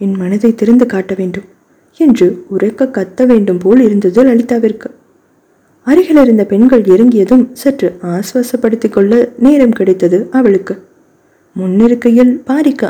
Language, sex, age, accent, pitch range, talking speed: Tamil, female, 20-39, native, 200-255 Hz, 110 wpm